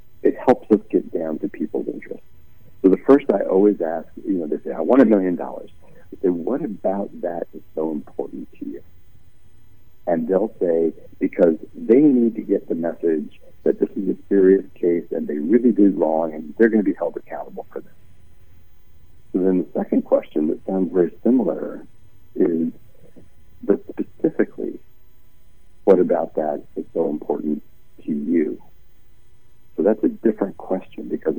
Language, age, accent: English, 60-79, American